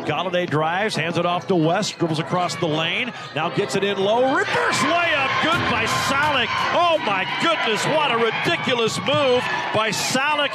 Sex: male